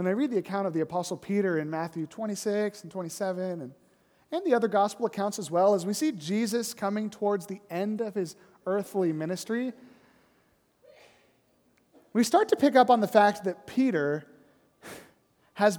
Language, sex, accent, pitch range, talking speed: English, male, American, 190-245 Hz, 170 wpm